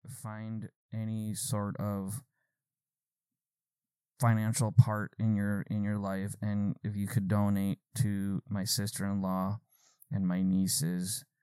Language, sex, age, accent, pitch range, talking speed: English, male, 20-39, American, 95-120 Hz, 115 wpm